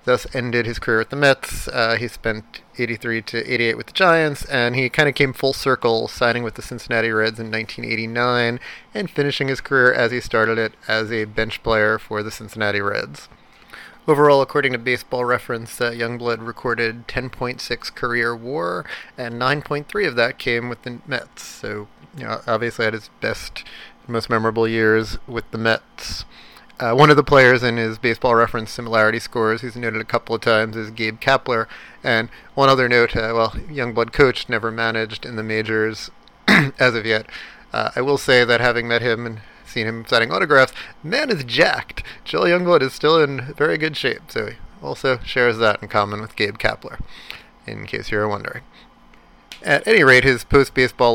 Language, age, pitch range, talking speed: English, 30-49, 110-125 Hz, 185 wpm